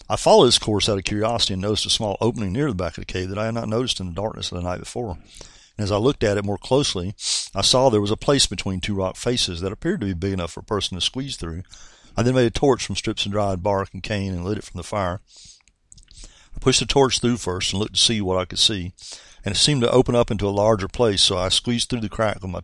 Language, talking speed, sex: English, 290 wpm, male